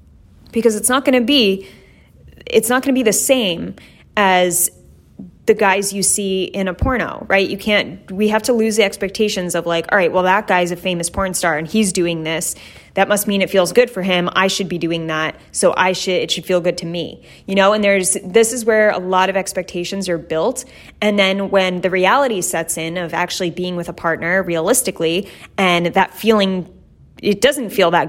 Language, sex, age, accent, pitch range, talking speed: English, female, 20-39, American, 175-205 Hz, 215 wpm